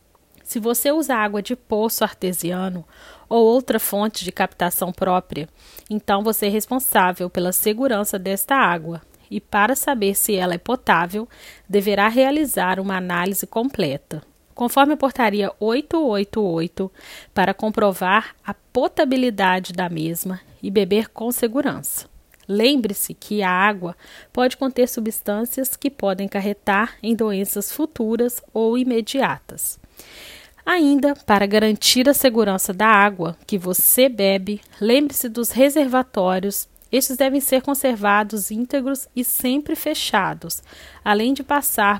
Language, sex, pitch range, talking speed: Portuguese, female, 195-255 Hz, 125 wpm